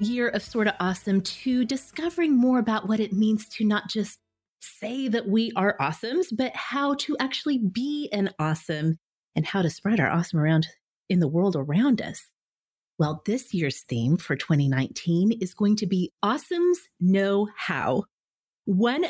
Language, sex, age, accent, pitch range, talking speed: English, female, 30-49, American, 180-265 Hz, 165 wpm